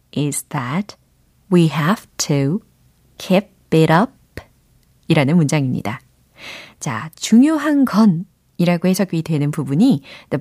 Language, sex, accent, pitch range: Korean, female, native, 150-225 Hz